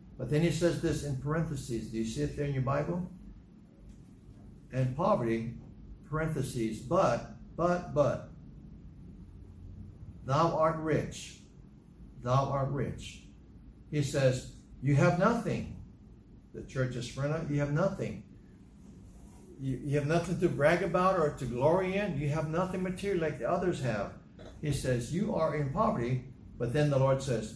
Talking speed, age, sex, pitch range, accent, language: 150 wpm, 60-79, male, 115-175 Hz, American, English